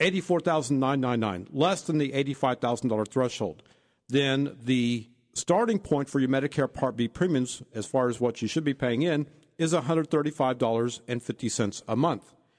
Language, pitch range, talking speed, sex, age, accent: English, 120-155 Hz, 140 wpm, male, 50-69, American